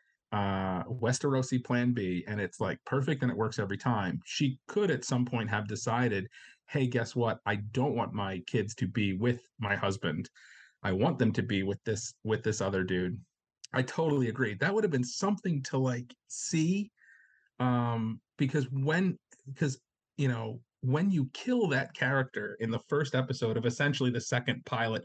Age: 40-59